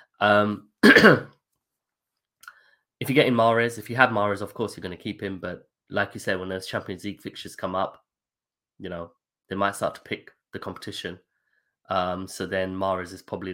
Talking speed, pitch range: 180 wpm, 90-105 Hz